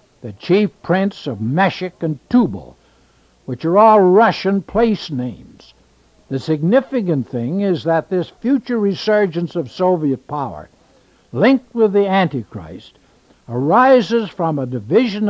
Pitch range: 155-205 Hz